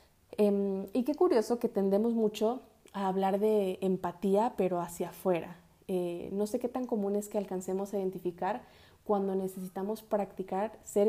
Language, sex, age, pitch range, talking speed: Spanish, female, 20-39, 190-225 Hz, 155 wpm